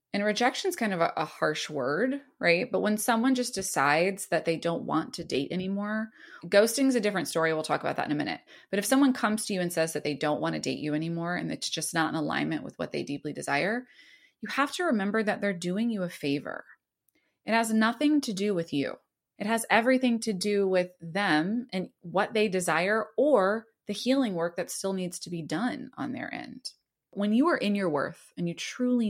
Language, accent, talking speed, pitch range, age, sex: English, American, 230 wpm, 170-230 Hz, 20-39, female